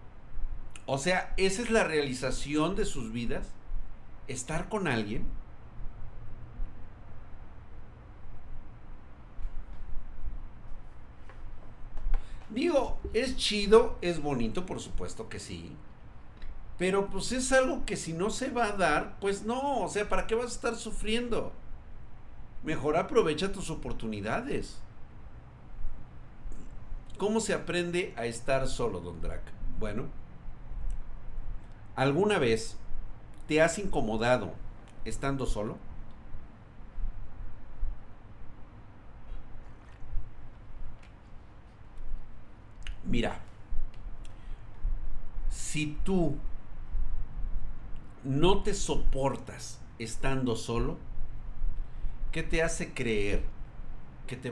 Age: 50-69